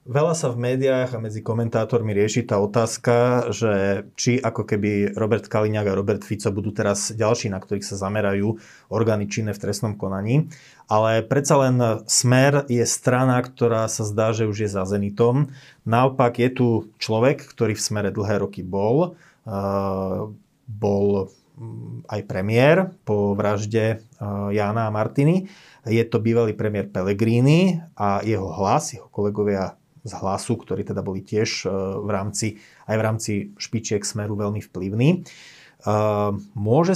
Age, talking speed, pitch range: 30-49, 140 wpm, 105-125 Hz